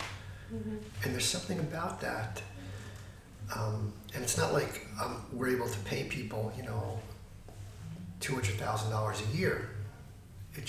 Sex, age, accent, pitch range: male, 40-59, American, 100-125 Hz